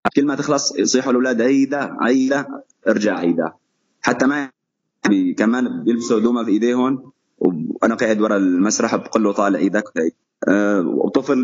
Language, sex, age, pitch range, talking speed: Arabic, male, 20-39, 110-145 Hz, 130 wpm